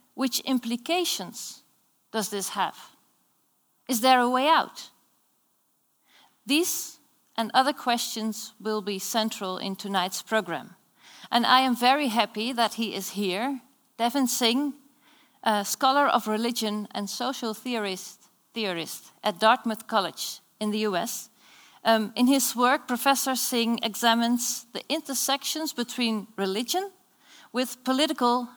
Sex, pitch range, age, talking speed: female, 205-255 Hz, 40-59, 120 wpm